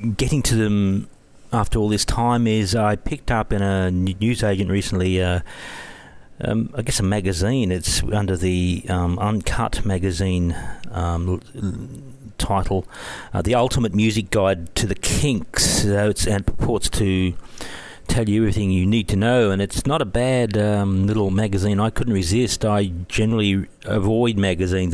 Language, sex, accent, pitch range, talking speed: English, male, Australian, 95-110 Hz, 160 wpm